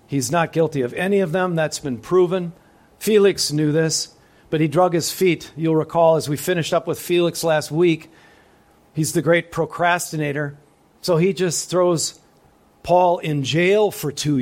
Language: English